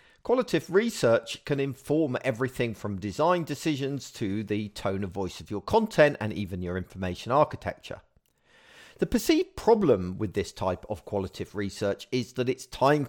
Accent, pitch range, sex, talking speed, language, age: British, 100-135 Hz, male, 155 wpm, English, 40-59